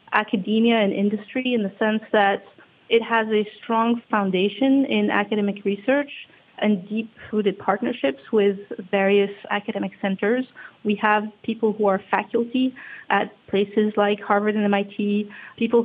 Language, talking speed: English, 135 wpm